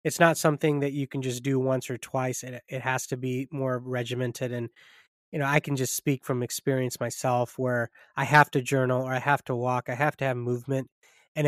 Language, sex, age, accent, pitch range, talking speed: English, male, 20-39, American, 125-150 Hz, 230 wpm